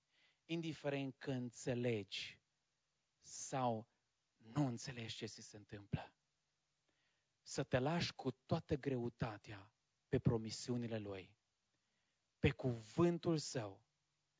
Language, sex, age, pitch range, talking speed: English, male, 30-49, 110-150 Hz, 90 wpm